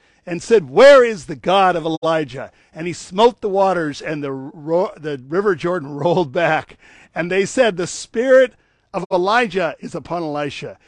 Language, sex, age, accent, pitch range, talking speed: English, male, 50-69, American, 165-210 Hz, 170 wpm